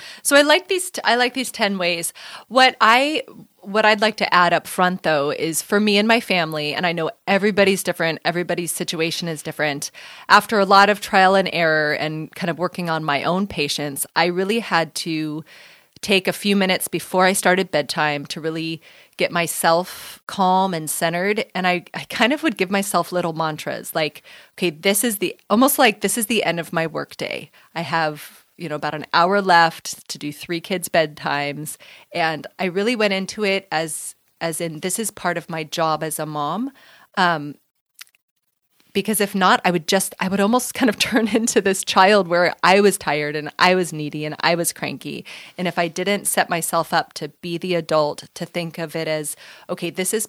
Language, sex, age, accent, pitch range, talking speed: English, female, 30-49, American, 155-195 Hz, 205 wpm